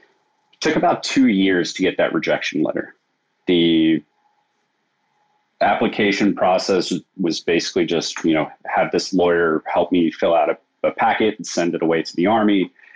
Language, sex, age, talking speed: English, male, 30-49, 155 wpm